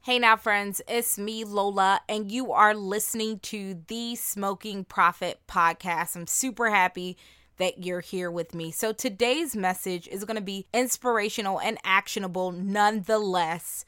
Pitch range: 195-240 Hz